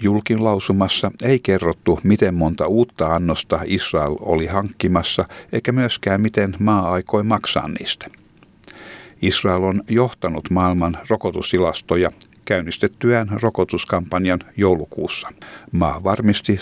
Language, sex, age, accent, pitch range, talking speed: Finnish, male, 60-79, native, 85-105 Hz, 100 wpm